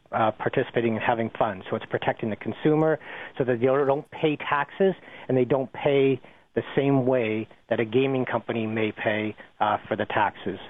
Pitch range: 115-135 Hz